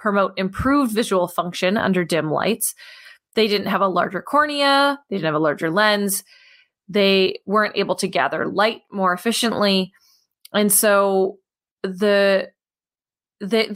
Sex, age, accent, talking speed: female, 20-39, American, 135 wpm